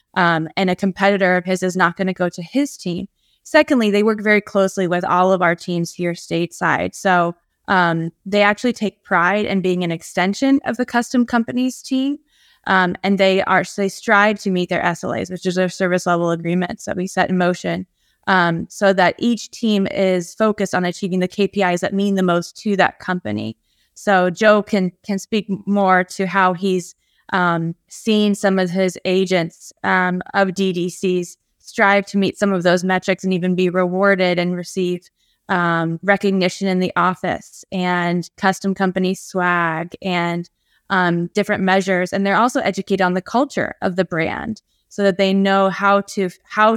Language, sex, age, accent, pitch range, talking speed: English, female, 20-39, American, 180-200 Hz, 180 wpm